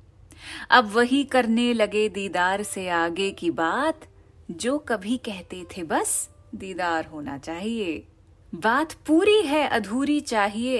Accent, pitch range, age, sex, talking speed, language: native, 165-245 Hz, 30-49, female, 120 wpm, Hindi